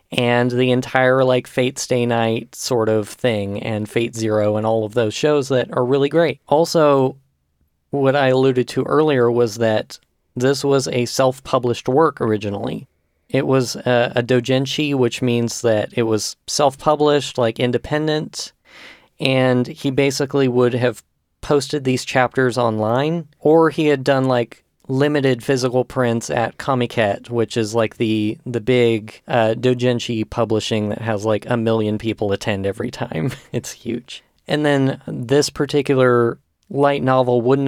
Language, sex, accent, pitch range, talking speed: English, male, American, 115-135 Hz, 150 wpm